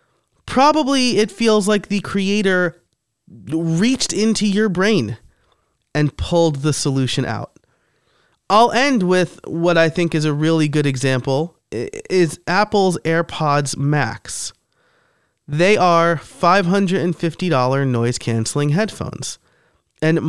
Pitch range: 125-165 Hz